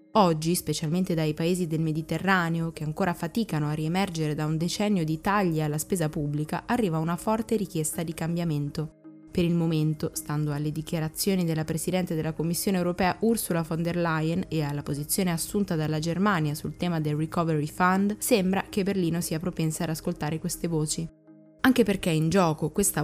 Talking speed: 170 wpm